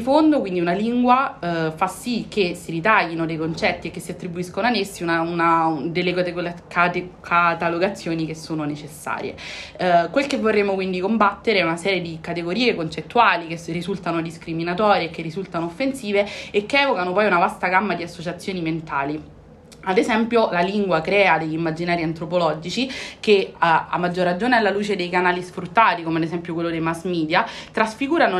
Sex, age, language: female, 30-49, Italian